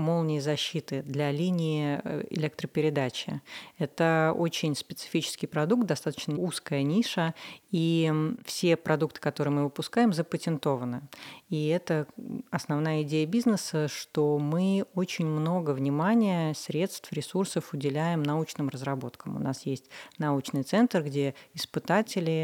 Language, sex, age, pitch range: Russian, female, 30-49, 145-175 Hz